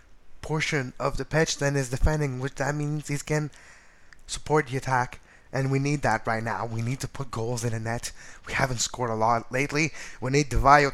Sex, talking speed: male, 210 wpm